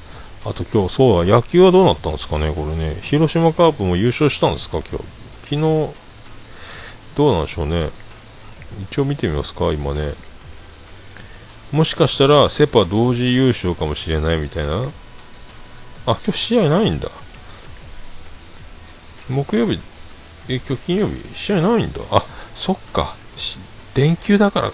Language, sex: Japanese, male